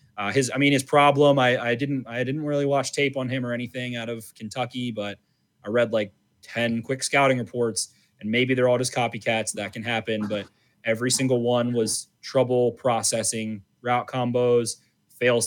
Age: 20-39